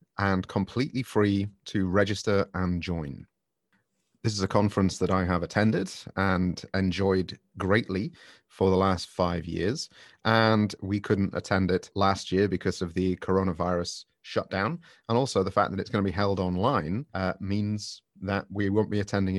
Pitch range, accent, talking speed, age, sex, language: 95-105 Hz, British, 165 wpm, 30-49, male, English